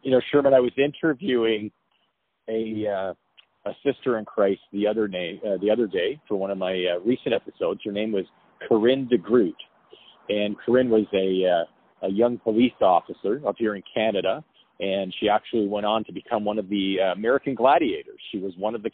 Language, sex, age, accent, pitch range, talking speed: English, male, 40-59, American, 100-120 Hz, 200 wpm